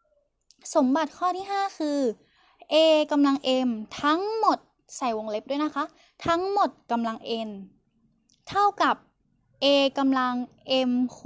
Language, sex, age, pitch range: Thai, female, 10-29, 240-315 Hz